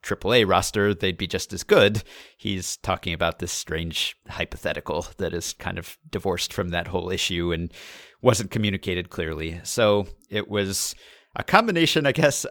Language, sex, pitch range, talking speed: English, male, 90-105 Hz, 165 wpm